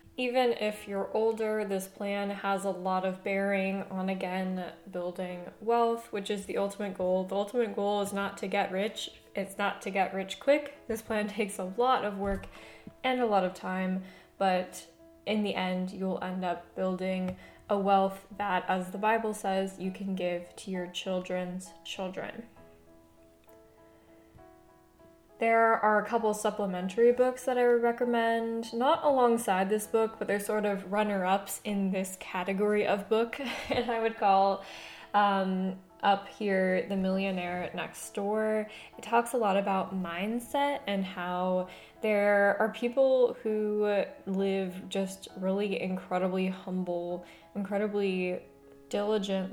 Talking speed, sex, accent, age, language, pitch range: 150 wpm, female, American, 10-29, English, 185-215 Hz